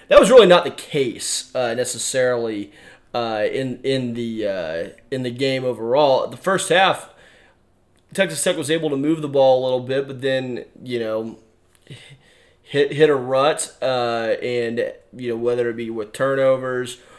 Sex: male